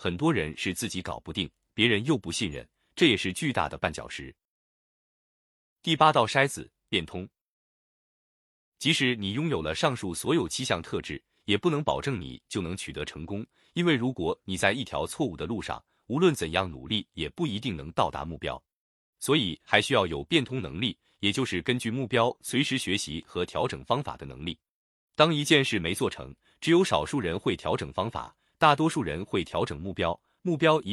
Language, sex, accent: Chinese, male, native